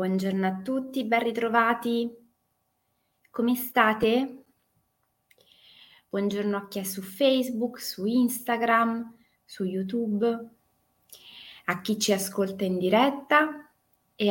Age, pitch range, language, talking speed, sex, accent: 20-39, 185-235 Hz, Italian, 100 wpm, female, native